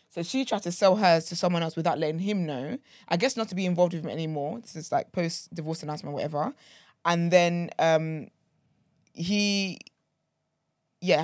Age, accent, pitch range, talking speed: 20-39, British, 155-200 Hz, 185 wpm